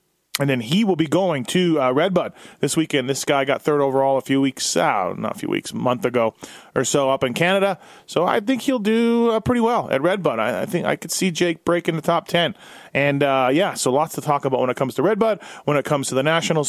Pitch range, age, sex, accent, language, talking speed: 130-170 Hz, 30-49, male, American, English, 270 wpm